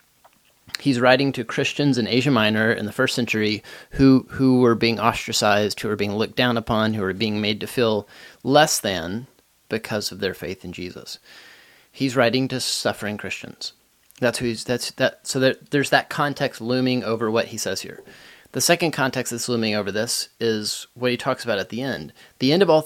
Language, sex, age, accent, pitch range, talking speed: English, male, 30-49, American, 110-130 Hz, 200 wpm